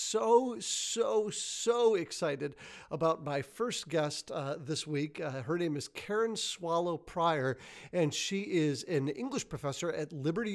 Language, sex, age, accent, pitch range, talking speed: English, male, 50-69, American, 150-190 Hz, 150 wpm